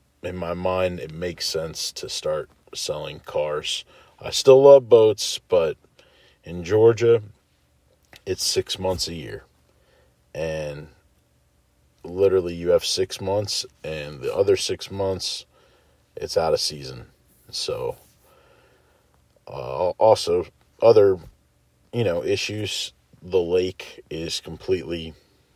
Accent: American